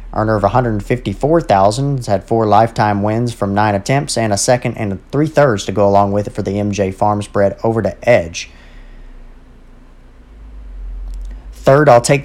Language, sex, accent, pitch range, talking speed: English, male, American, 100-120 Hz, 150 wpm